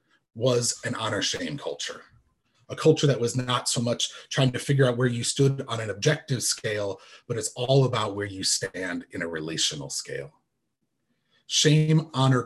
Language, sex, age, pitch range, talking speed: English, male, 30-49, 115-145 Hz, 175 wpm